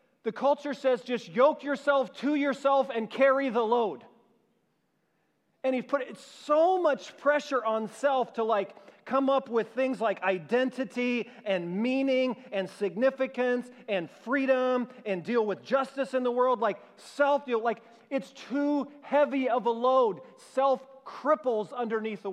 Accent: American